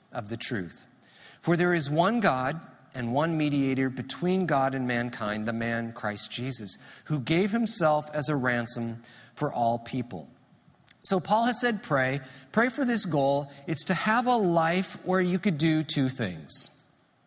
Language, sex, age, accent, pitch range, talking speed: English, male, 40-59, American, 125-175 Hz, 165 wpm